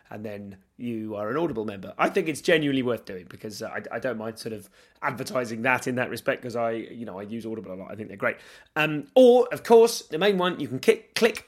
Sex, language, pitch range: male, English, 120-165 Hz